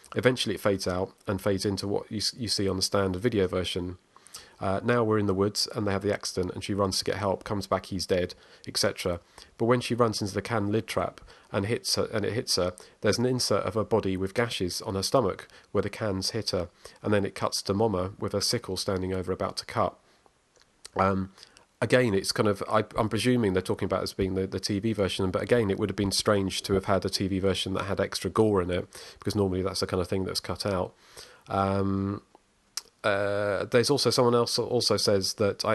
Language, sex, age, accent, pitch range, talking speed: English, male, 40-59, British, 95-110 Hz, 235 wpm